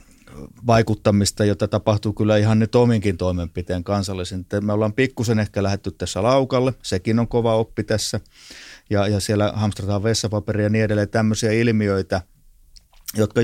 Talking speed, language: 145 wpm, Finnish